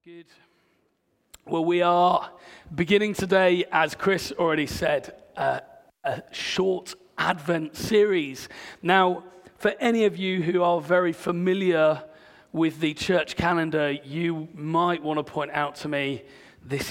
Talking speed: 130 wpm